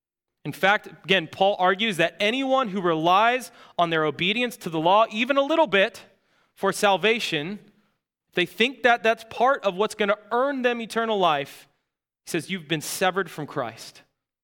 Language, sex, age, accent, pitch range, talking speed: English, male, 30-49, American, 160-225 Hz, 170 wpm